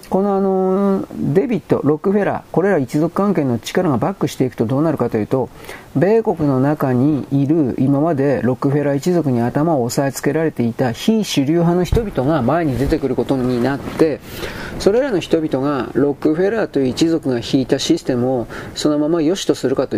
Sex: male